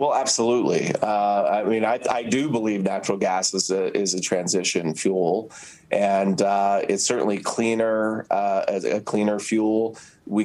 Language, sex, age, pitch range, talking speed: English, male, 30-49, 100-115 Hz, 155 wpm